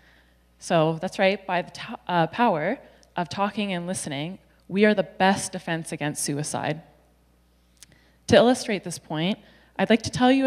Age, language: 20-39, English